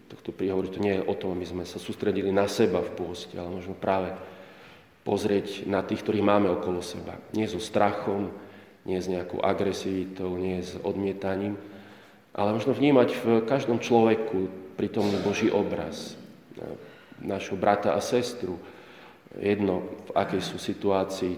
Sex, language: male, Slovak